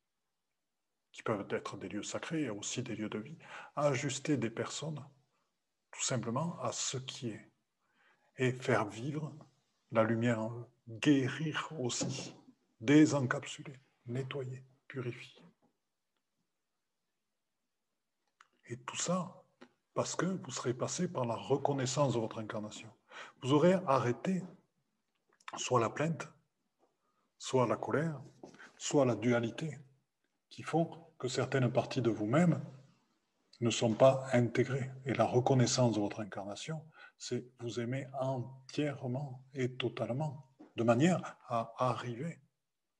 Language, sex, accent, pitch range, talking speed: French, male, French, 120-150 Hz, 115 wpm